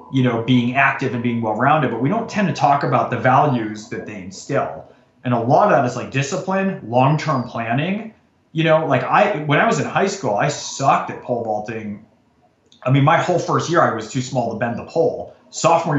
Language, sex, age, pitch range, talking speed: English, male, 30-49, 115-155 Hz, 225 wpm